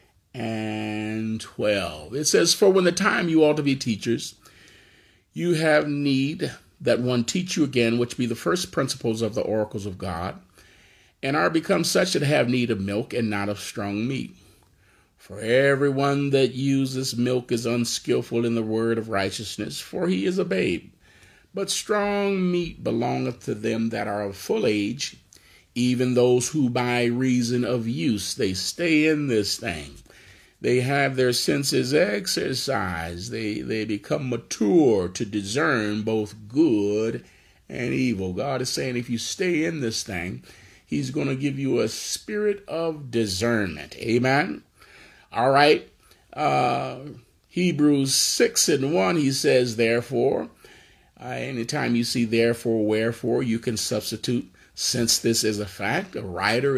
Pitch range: 105-135 Hz